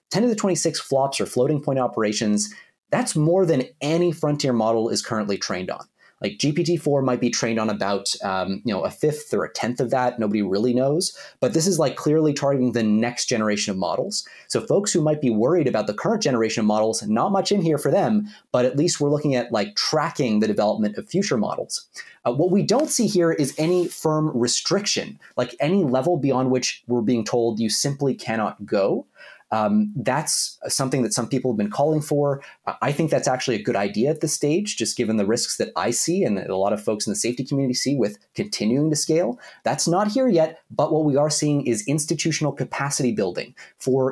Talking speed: 215 wpm